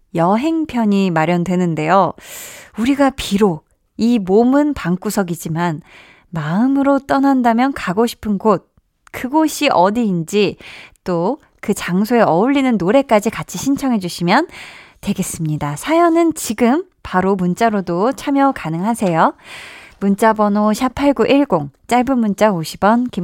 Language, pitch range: Korean, 175-240 Hz